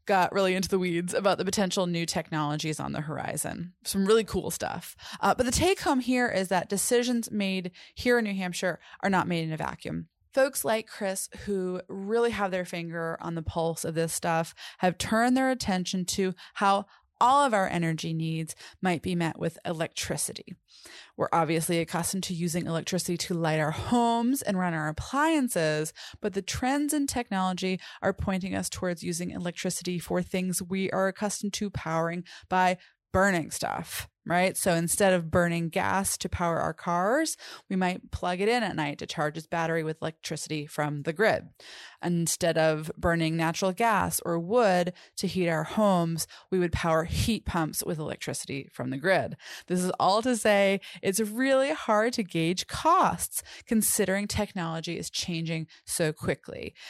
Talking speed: 175 wpm